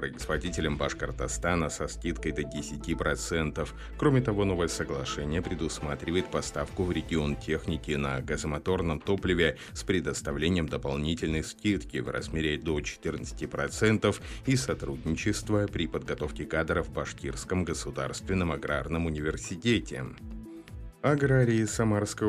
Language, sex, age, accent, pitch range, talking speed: Russian, male, 30-49, native, 75-95 Hz, 100 wpm